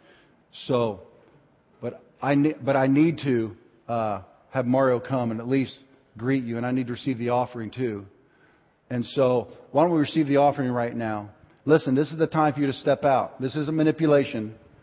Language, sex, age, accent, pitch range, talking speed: English, male, 40-59, American, 125-155 Hz, 200 wpm